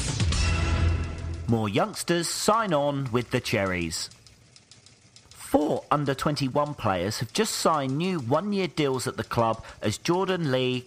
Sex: male